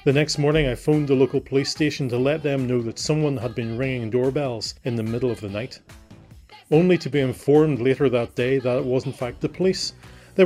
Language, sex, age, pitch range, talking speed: English, male, 30-49, 125-150 Hz, 230 wpm